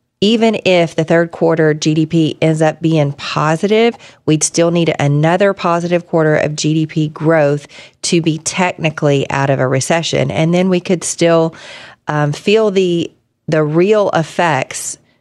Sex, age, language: female, 40-59, English